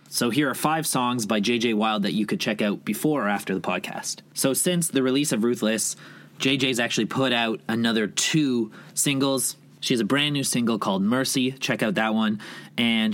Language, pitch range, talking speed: English, 115-155 Hz, 200 wpm